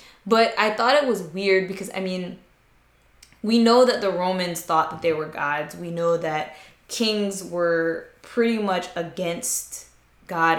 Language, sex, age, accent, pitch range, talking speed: English, female, 10-29, American, 165-205 Hz, 160 wpm